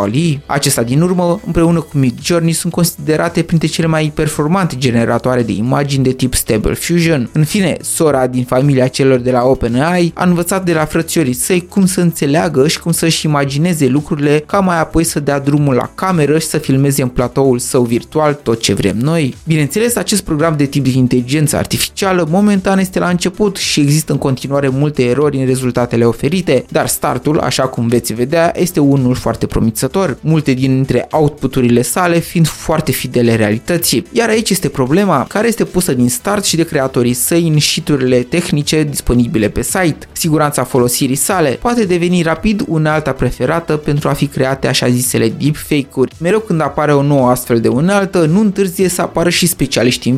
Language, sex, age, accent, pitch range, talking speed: Romanian, male, 20-39, native, 130-175 Hz, 180 wpm